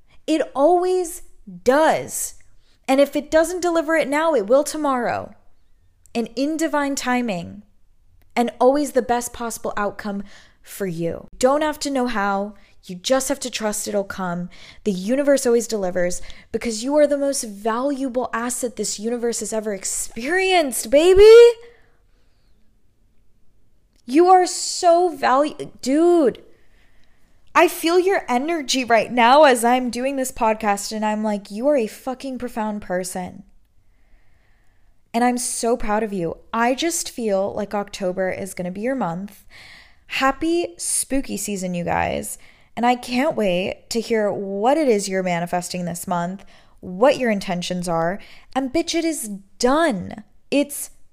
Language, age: English, 20-39